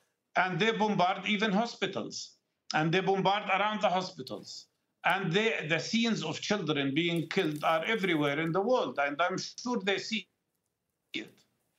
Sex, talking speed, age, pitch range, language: male, 155 wpm, 50-69, 155-210 Hz, English